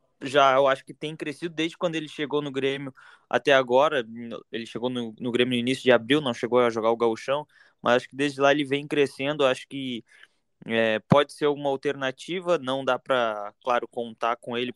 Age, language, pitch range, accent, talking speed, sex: 20-39, Portuguese, 120-150 Hz, Brazilian, 205 wpm, male